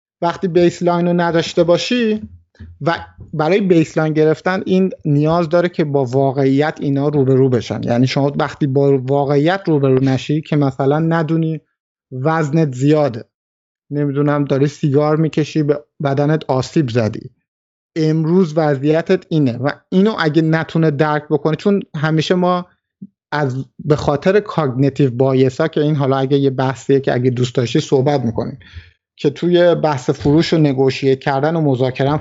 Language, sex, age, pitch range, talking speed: Persian, male, 50-69, 135-170 Hz, 145 wpm